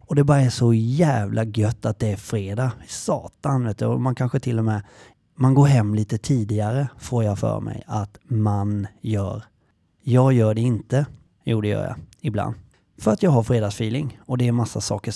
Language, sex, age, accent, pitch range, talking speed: Swedish, male, 30-49, native, 110-145 Hz, 200 wpm